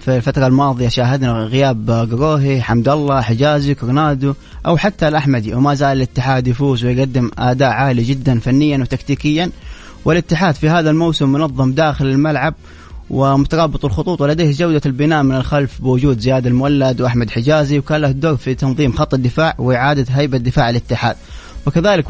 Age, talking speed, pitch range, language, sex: 20-39, 145 wpm, 130-155 Hz, English, male